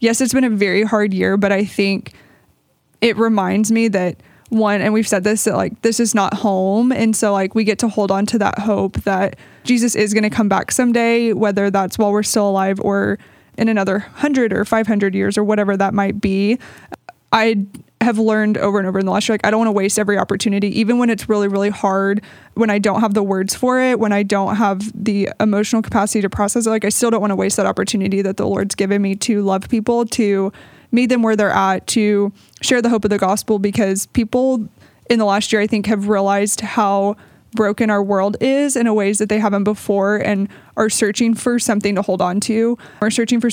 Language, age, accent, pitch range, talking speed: English, 20-39, American, 200-225 Hz, 230 wpm